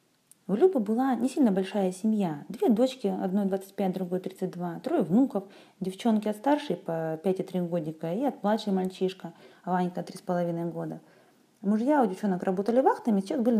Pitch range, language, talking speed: 175-225 Hz, Russian, 160 wpm